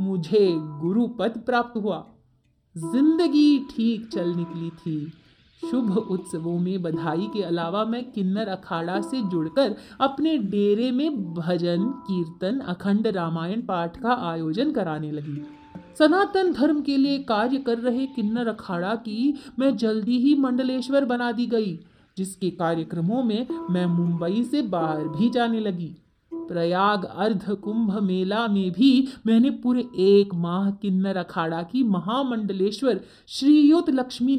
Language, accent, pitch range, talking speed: Hindi, native, 180-265 Hz, 135 wpm